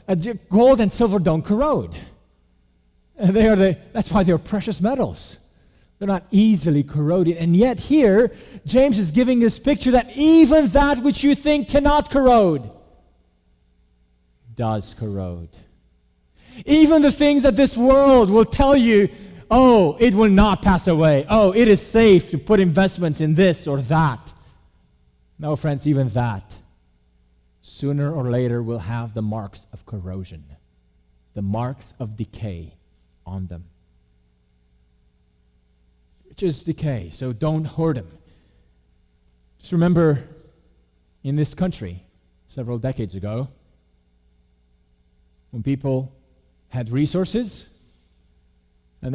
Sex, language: male, English